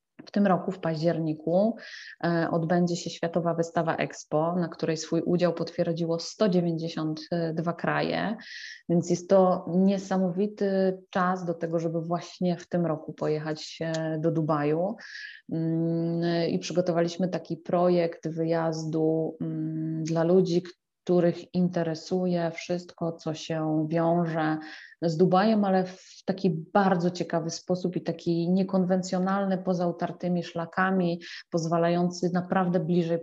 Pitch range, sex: 165-180 Hz, female